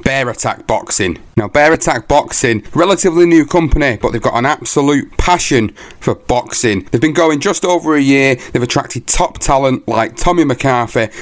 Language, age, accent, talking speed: English, 30-49, British, 170 wpm